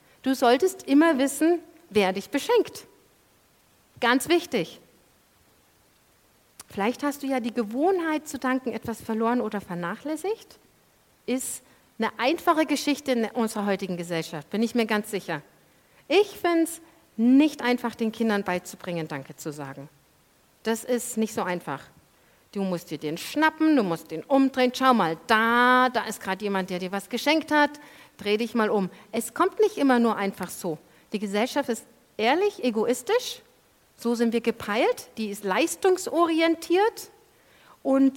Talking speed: 150 wpm